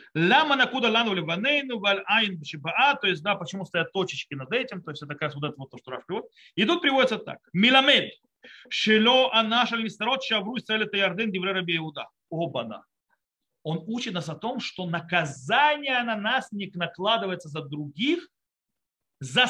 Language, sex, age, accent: Russian, male, 40-59, native